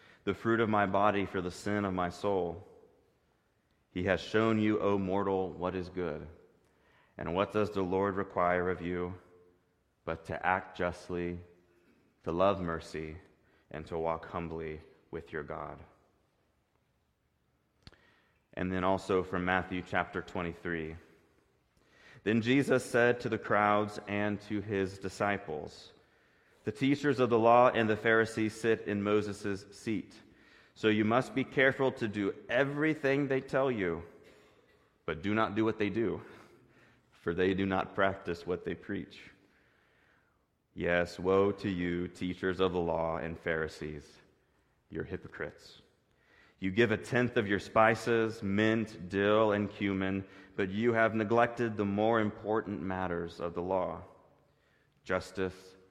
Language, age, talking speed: English, 30-49, 140 wpm